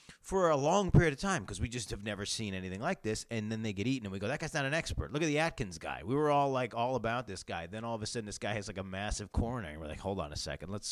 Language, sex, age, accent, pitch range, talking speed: English, male, 30-49, American, 90-115 Hz, 335 wpm